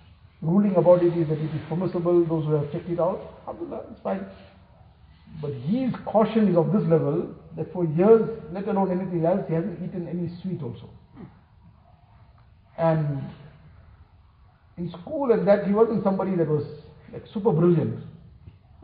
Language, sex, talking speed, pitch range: English, male, 160 wpm, 140-190 Hz